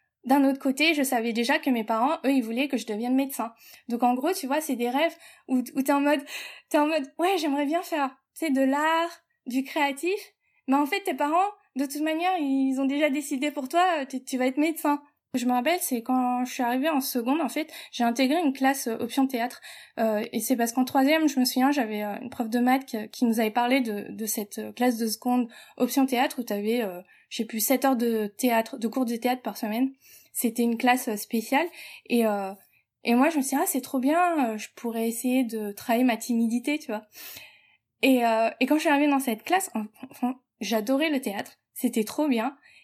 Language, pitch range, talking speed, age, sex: French, 235-290 Hz, 225 wpm, 20-39, female